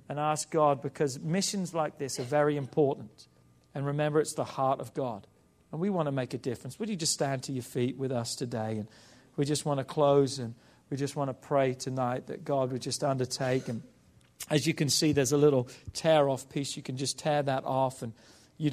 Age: 40-59